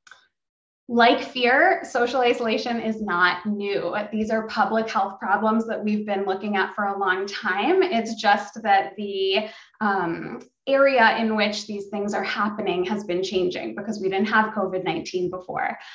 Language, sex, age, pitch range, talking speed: English, female, 20-39, 195-240 Hz, 160 wpm